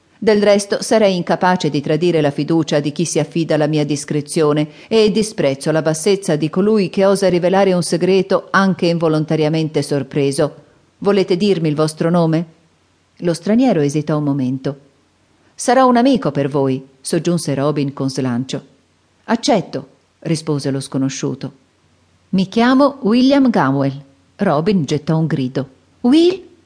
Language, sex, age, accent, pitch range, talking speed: Italian, female, 40-59, native, 145-195 Hz, 135 wpm